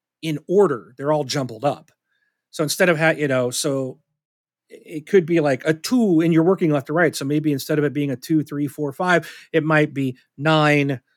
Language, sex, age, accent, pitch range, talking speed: English, male, 40-59, American, 135-165 Hz, 210 wpm